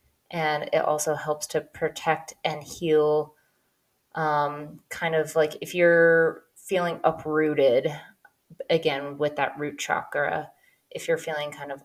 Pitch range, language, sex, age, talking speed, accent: 145-170 Hz, English, female, 20-39, 130 wpm, American